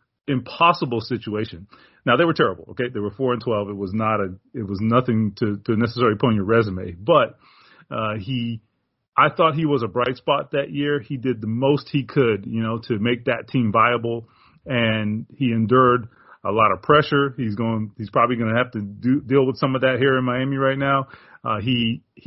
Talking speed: 210 wpm